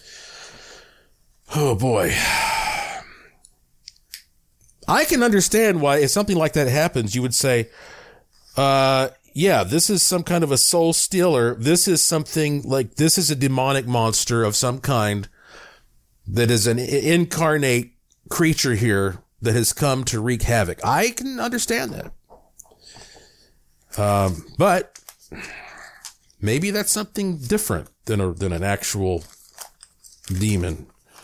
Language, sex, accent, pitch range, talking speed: English, male, American, 100-145 Hz, 120 wpm